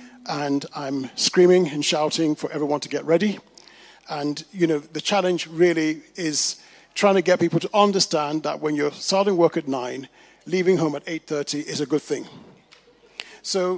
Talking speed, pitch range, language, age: 175 wpm, 150-180 Hz, English, 40-59